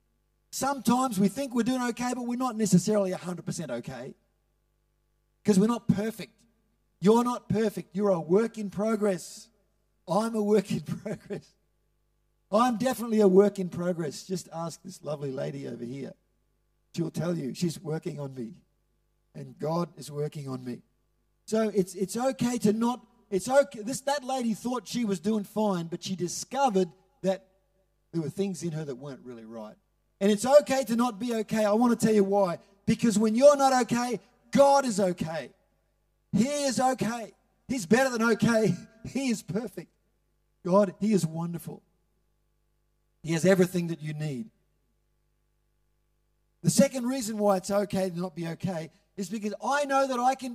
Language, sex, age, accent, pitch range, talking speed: English, male, 50-69, Australian, 180-235 Hz, 165 wpm